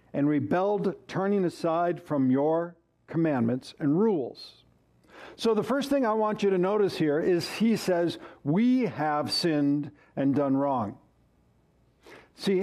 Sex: male